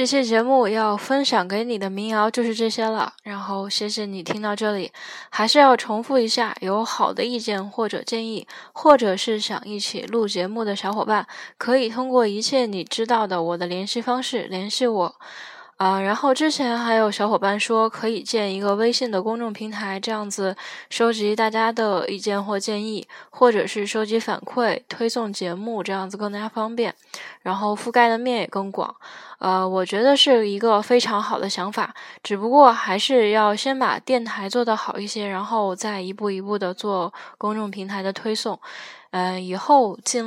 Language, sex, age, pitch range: Chinese, female, 10-29, 200-235 Hz